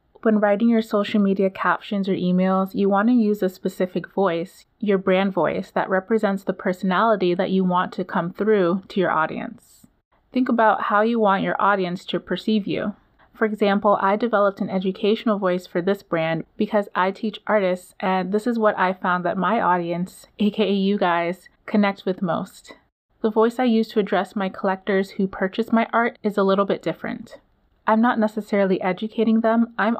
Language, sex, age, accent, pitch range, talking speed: English, female, 30-49, American, 185-215 Hz, 185 wpm